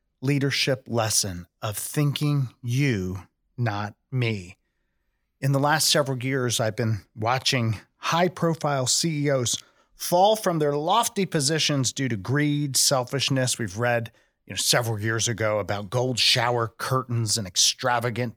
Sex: male